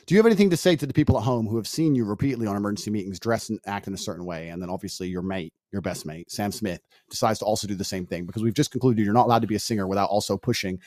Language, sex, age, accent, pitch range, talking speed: English, male, 30-49, American, 105-155 Hz, 315 wpm